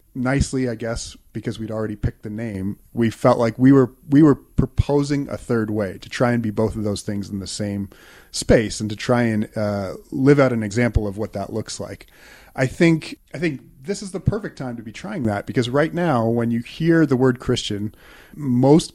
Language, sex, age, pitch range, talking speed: English, male, 30-49, 110-135 Hz, 220 wpm